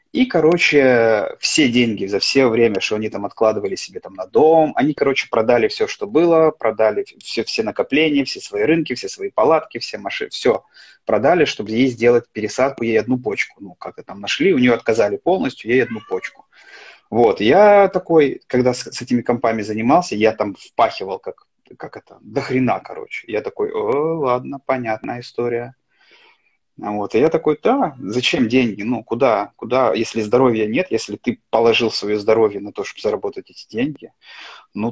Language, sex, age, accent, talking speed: Russian, male, 30-49, native, 175 wpm